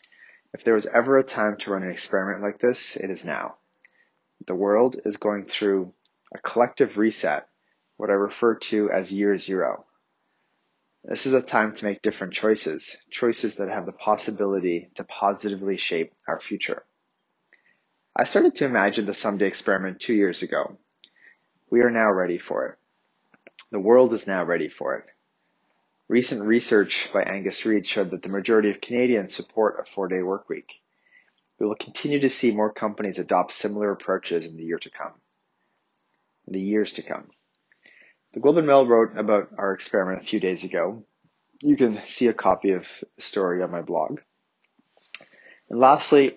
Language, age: English, 30-49